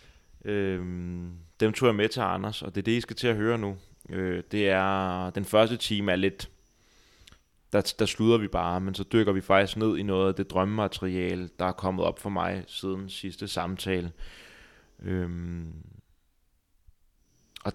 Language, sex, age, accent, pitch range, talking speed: Danish, male, 20-39, native, 90-100 Hz, 165 wpm